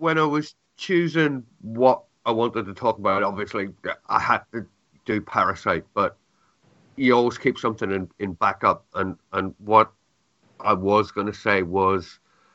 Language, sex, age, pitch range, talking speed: English, male, 50-69, 85-110 Hz, 160 wpm